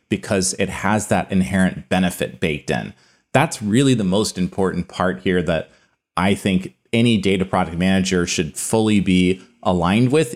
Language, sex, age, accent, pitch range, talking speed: English, male, 30-49, American, 90-115 Hz, 155 wpm